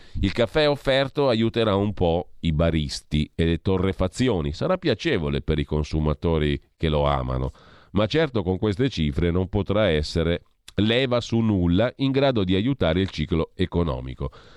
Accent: native